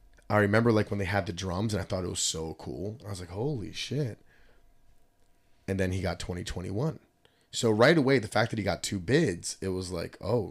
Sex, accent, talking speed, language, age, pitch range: male, American, 230 wpm, English, 30-49, 90-110 Hz